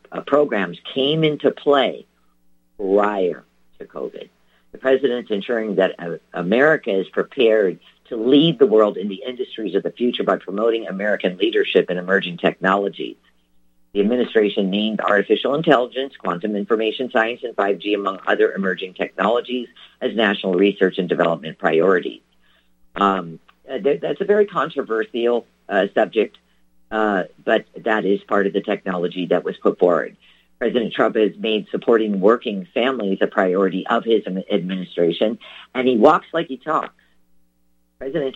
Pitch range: 90-125 Hz